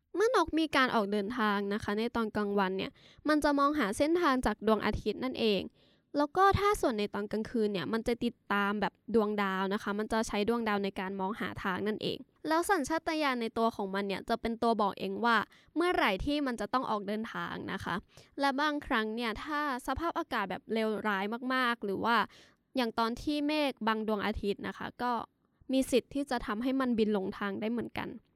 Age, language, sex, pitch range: 10-29, English, female, 205-275 Hz